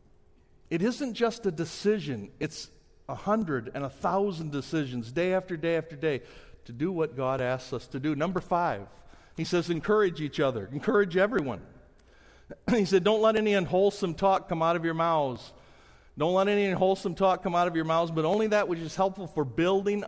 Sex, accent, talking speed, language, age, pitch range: male, American, 190 wpm, English, 50-69, 135-180 Hz